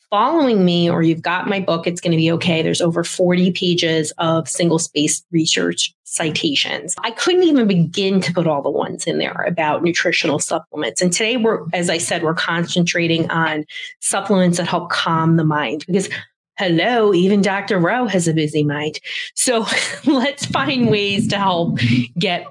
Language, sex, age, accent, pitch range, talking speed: English, female, 30-49, American, 165-210 Hz, 175 wpm